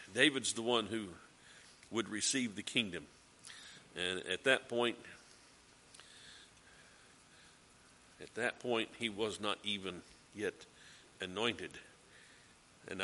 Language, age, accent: English, 50-69, American